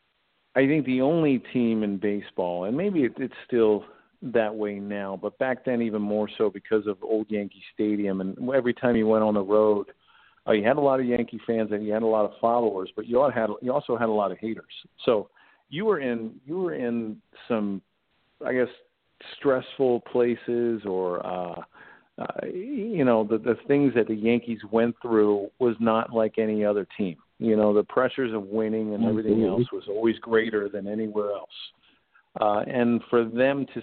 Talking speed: 195 wpm